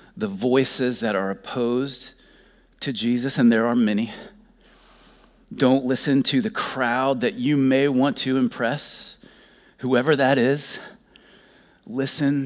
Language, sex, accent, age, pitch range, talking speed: English, male, American, 40-59, 125-165 Hz, 125 wpm